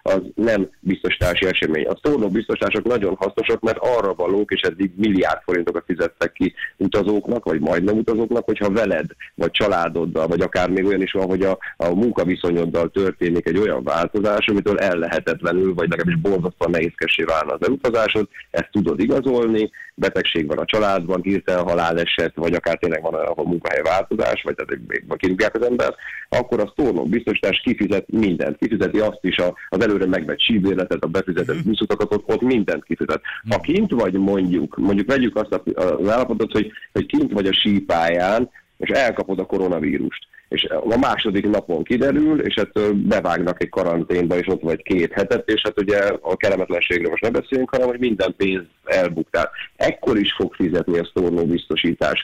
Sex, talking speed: male, 170 wpm